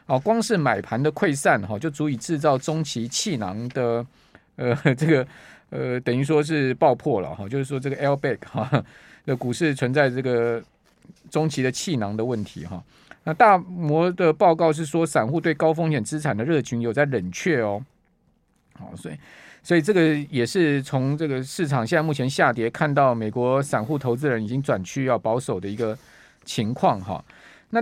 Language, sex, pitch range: Chinese, male, 125-165 Hz